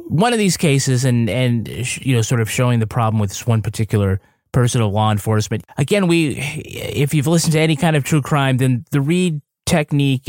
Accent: American